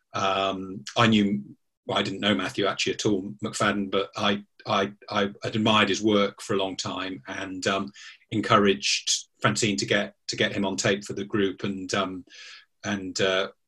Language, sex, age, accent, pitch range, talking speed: English, male, 30-49, British, 95-110 Hz, 175 wpm